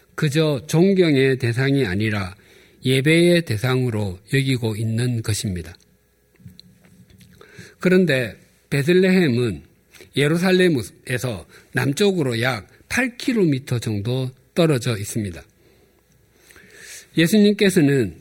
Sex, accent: male, native